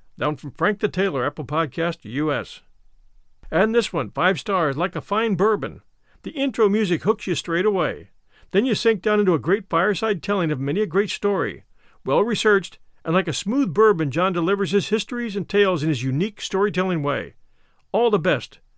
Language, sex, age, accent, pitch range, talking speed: English, male, 50-69, American, 155-205 Hz, 190 wpm